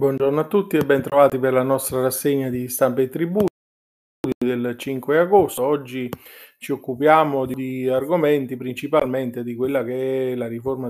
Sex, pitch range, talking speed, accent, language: male, 125-140 Hz, 155 wpm, native, Italian